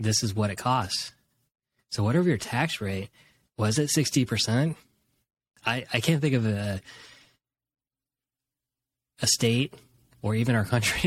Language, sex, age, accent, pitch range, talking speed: English, male, 20-39, American, 110-130 Hz, 135 wpm